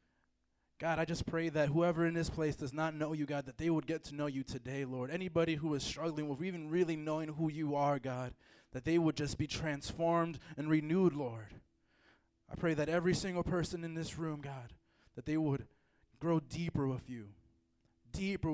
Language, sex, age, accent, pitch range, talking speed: English, male, 20-39, American, 130-165 Hz, 200 wpm